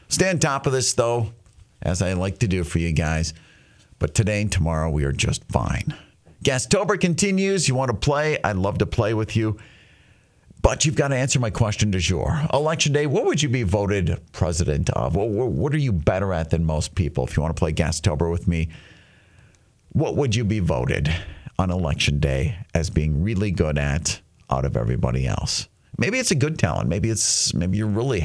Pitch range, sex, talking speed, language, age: 85-130 Hz, male, 200 wpm, English, 50-69